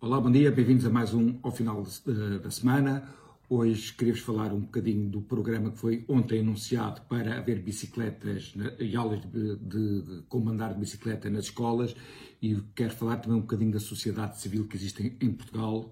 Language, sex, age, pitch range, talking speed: Portuguese, male, 50-69, 105-125 Hz, 185 wpm